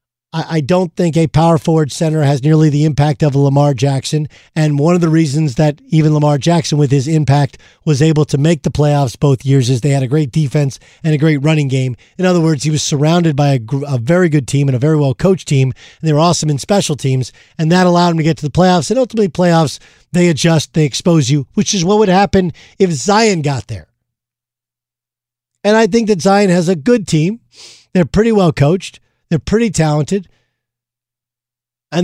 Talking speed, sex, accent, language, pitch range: 210 wpm, male, American, English, 140-175 Hz